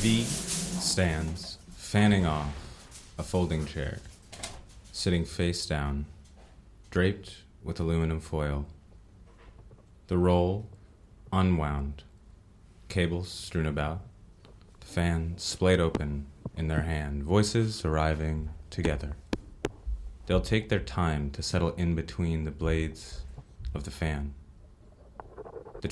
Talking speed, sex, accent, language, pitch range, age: 100 wpm, male, American, German, 80-95 Hz, 30-49